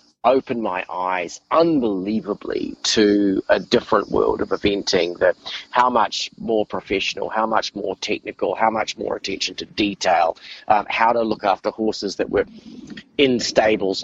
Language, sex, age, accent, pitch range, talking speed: English, male, 30-49, Australian, 100-115 Hz, 150 wpm